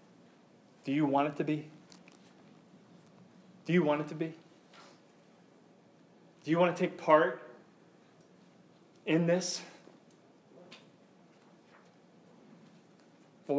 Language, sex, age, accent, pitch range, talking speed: English, male, 30-49, American, 130-175 Hz, 95 wpm